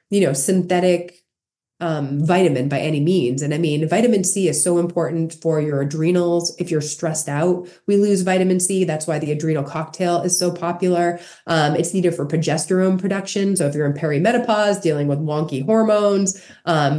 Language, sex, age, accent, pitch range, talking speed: English, female, 30-49, American, 155-185 Hz, 180 wpm